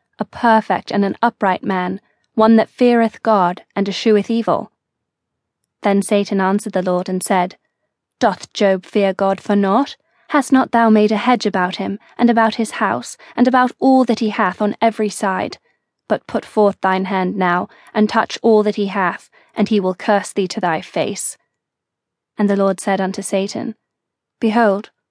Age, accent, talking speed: 20-39, British, 175 wpm